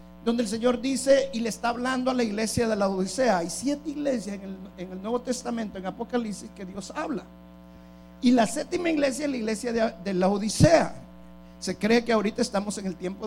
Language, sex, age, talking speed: Spanish, male, 50-69, 210 wpm